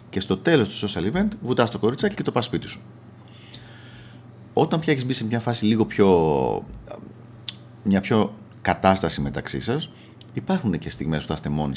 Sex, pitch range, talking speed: male, 80-120 Hz, 175 wpm